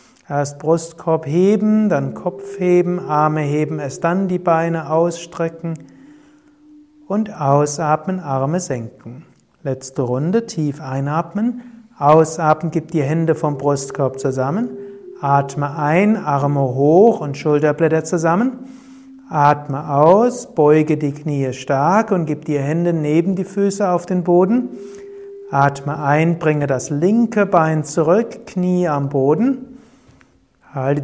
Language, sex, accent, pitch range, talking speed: German, male, German, 150-215 Hz, 120 wpm